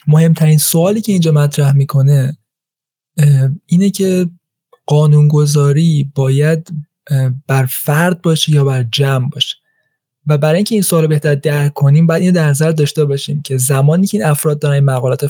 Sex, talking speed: male, 155 wpm